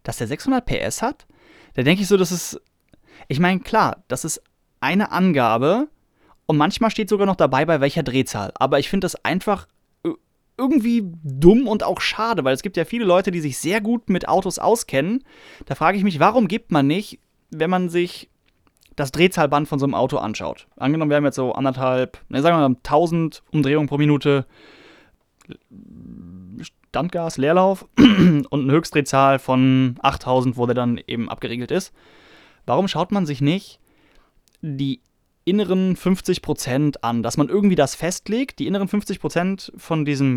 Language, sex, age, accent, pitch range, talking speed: German, male, 30-49, German, 130-185 Hz, 170 wpm